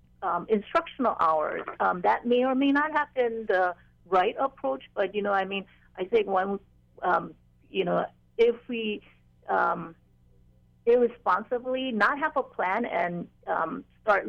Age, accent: 50-69, American